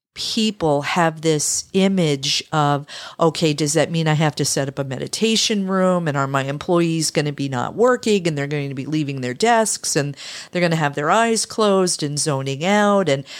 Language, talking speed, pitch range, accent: English, 205 wpm, 145-190 Hz, American